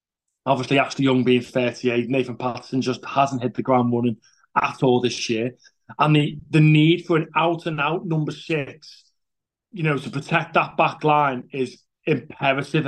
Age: 30-49